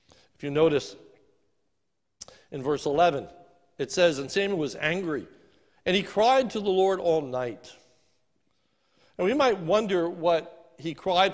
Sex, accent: male, American